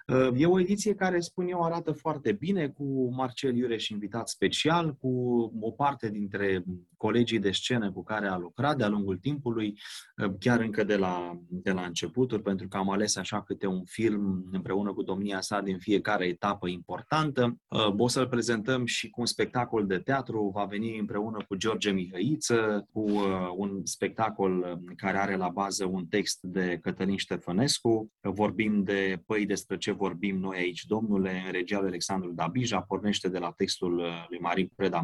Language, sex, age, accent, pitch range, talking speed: Romanian, male, 30-49, native, 95-130 Hz, 165 wpm